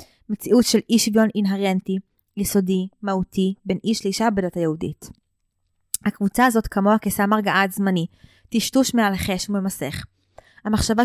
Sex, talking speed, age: female, 120 wpm, 20-39